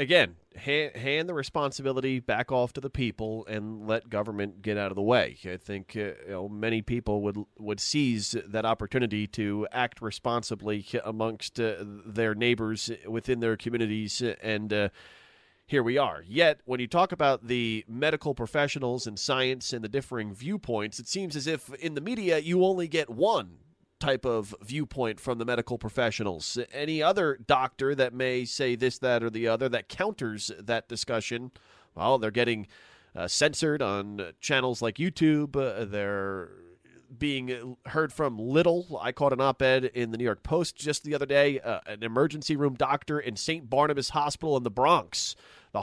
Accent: American